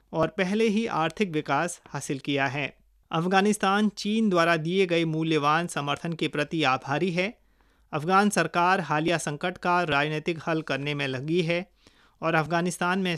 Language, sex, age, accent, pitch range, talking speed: Hindi, male, 30-49, native, 155-195 Hz, 150 wpm